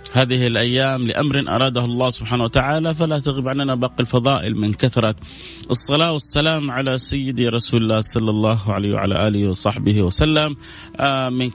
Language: English